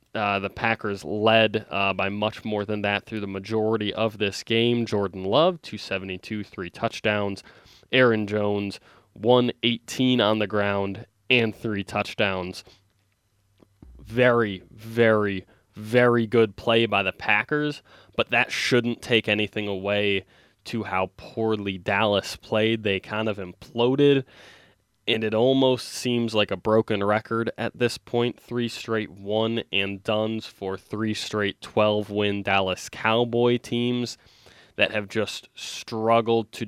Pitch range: 100-115 Hz